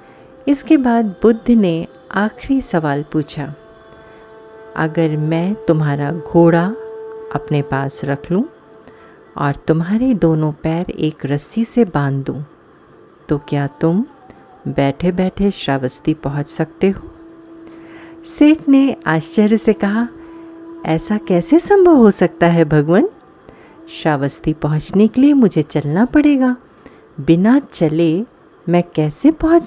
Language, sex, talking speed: Hindi, female, 115 wpm